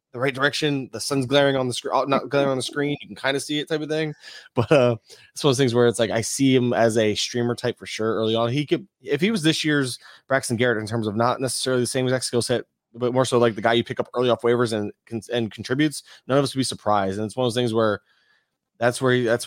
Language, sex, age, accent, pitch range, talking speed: English, male, 20-39, American, 110-135 Hz, 295 wpm